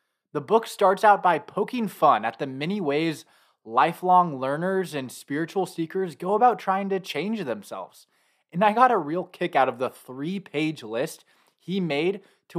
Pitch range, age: 140-195 Hz, 20-39